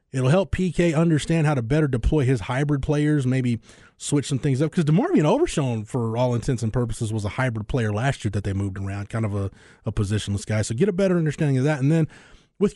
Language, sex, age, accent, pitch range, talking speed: English, male, 20-39, American, 120-150 Hz, 235 wpm